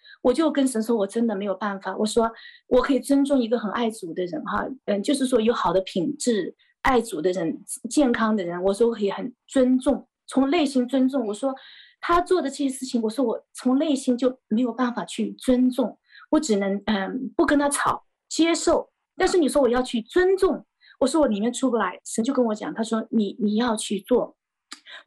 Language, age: Chinese, 20-39